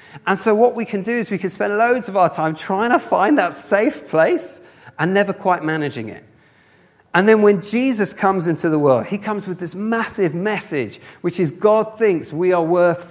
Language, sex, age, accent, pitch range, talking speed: English, male, 30-49, British, 130-175 Hz, 210 wpm